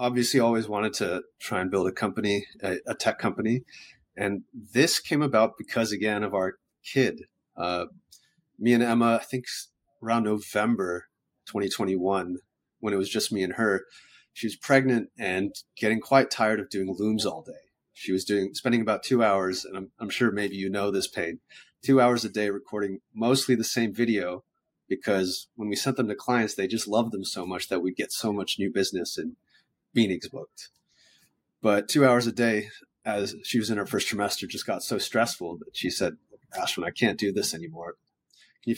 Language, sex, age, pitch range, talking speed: English, male, 30-49, 100-125 Hz, 195 wpm